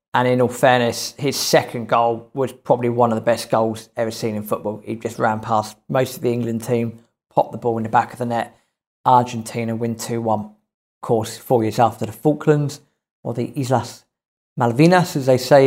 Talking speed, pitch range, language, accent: 205 wpm, 120-155 Hz, English, British